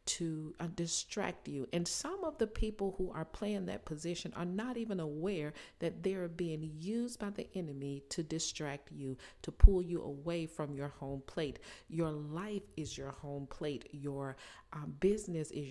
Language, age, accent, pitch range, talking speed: English, 40-59, American, 145-190 Hz, 175 wpm